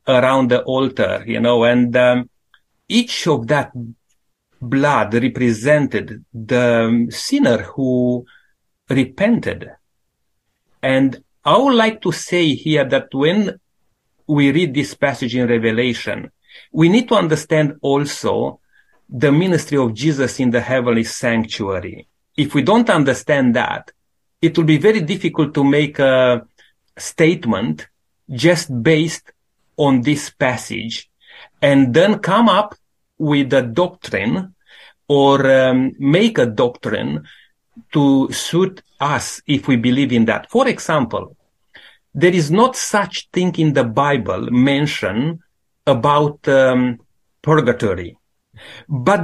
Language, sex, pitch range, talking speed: English, male, 125-175 Hz, 120 wpm